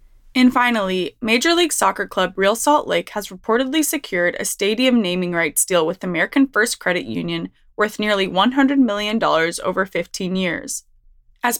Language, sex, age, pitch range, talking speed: English, female, 20-39, 185-235 Hz, 155 wpm